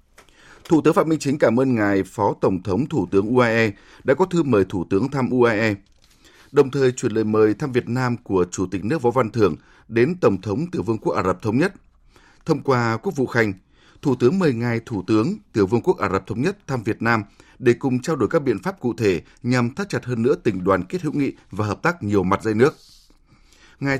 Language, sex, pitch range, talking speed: Vietnamese, male, 105-140 Hz, 240 wpm